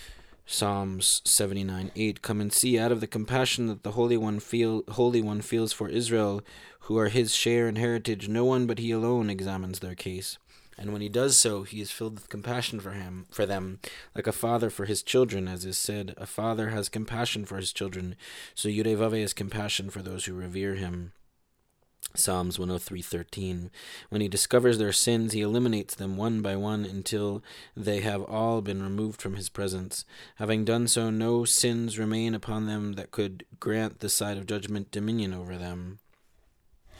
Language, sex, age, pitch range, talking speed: English, male, 20-39, 95-115 Hz, 185 wpm